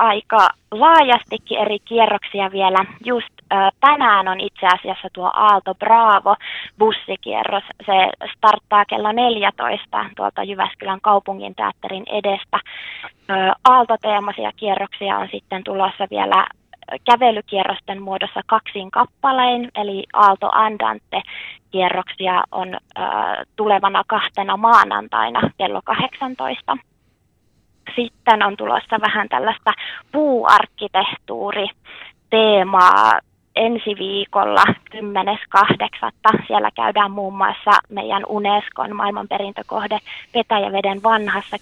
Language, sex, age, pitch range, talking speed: Finnish, female, 20-39, 195-230 Hz, 95 wpm